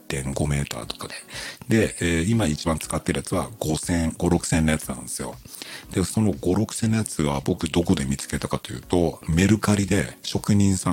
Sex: male